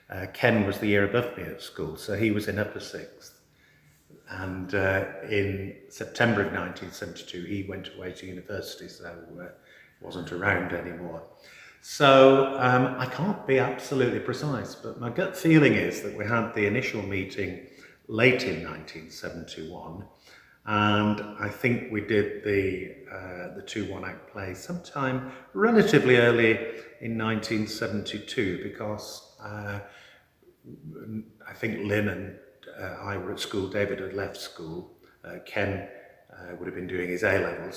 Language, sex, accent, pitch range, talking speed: English, male, British, 100-125 Hz, 145 wpm